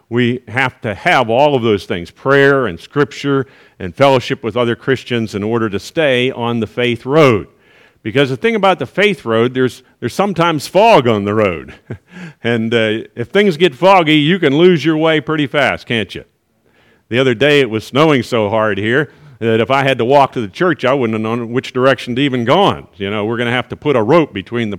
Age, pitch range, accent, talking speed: 50-69, 115-150 Hz, American, 225 wpm